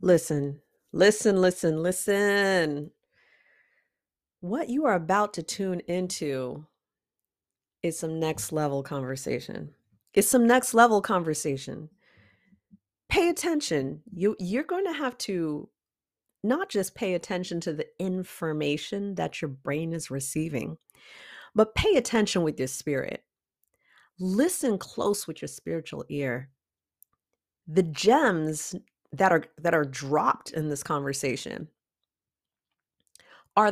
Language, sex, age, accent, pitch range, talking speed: English, female, 40-59, American, 150-220 Hz, 115 wpm